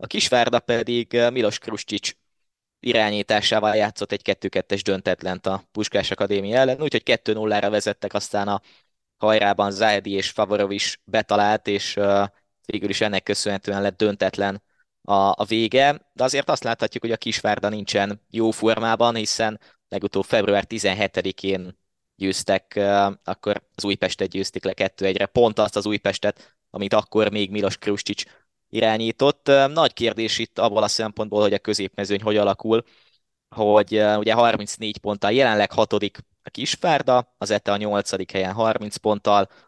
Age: 20-39